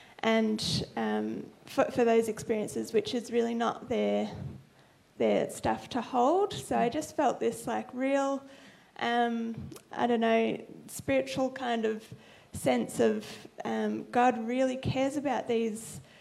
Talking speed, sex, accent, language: 135 wpm, female, Australian, English